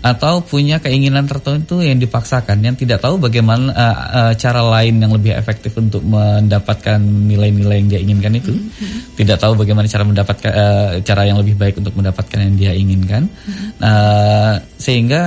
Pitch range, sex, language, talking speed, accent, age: 105-135 Hz, male, Indonesian, 160 wpm, native, 10-29